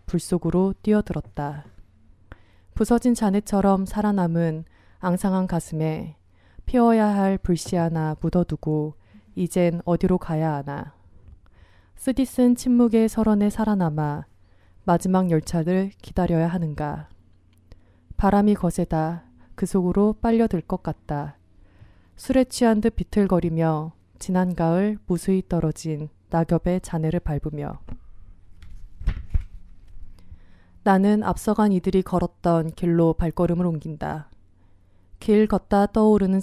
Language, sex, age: Korean, female, 20-39